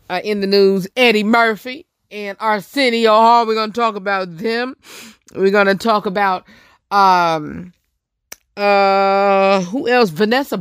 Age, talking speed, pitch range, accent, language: 30-49, 140 wpm, 155-200 Hz, American, English